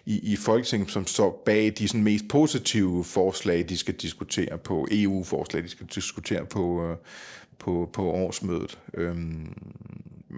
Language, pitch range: Danish, 90-115 Hz